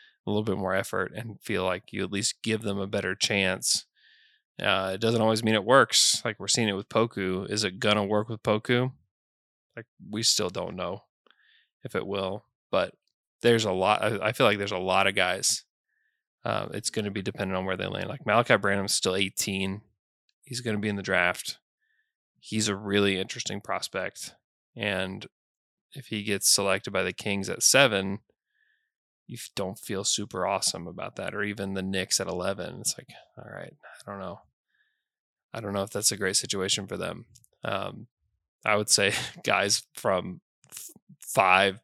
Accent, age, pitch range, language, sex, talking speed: American, 20-39, 95-105 Hz, English, male, 185 wpm